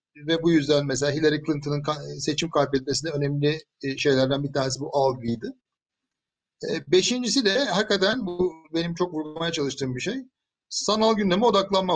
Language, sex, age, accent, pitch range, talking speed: Turkish, male, 60-79, native, 145-200 Hz, 140 wpm